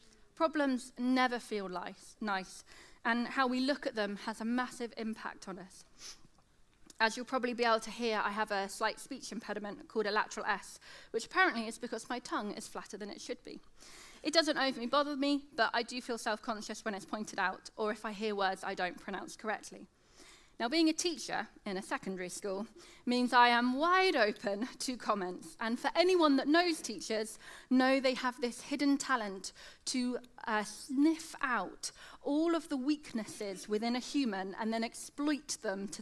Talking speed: 185 wpm